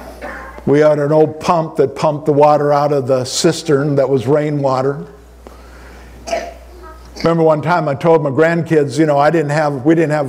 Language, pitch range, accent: English, 140-195 Hz, American